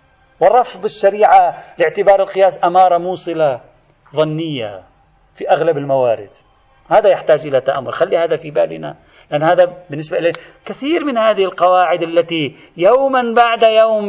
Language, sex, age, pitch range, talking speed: Arabic, male, 40-59, 180-245 Hz, 130 wpm